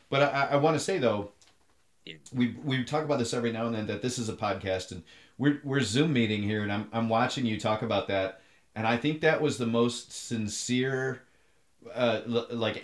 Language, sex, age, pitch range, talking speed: English, male, 30-49, 100-125 Hz, 210 wpm